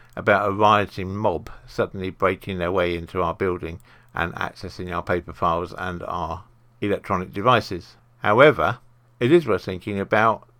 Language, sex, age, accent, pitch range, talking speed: English, male, 50-69, British, 95-120 Hz, 145 wpm